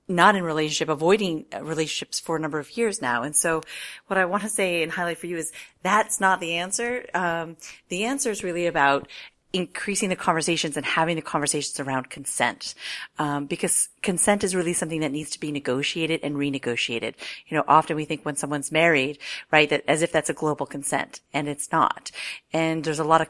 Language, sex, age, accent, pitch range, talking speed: English, female, 40-59, American, 150-175 Hz, 205 wpm